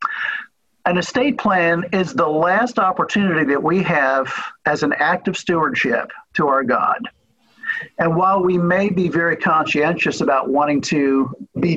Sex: male